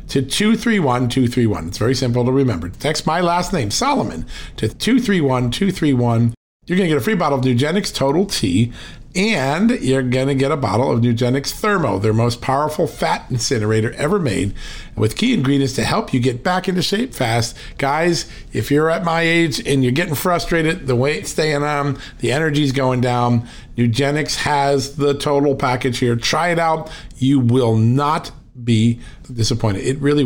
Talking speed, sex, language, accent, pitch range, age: 175 wpm, male, English, American, 120-150 Hz, 50-69